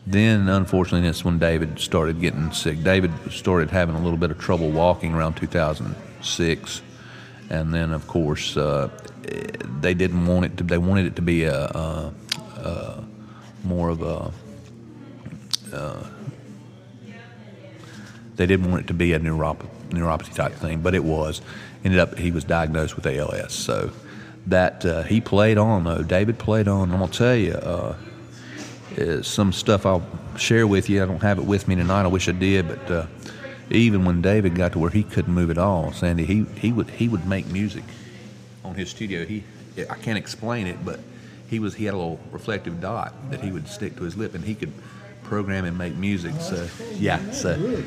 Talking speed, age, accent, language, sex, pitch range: 190 wpm, 40-59, American, English, male, 85-105 Hz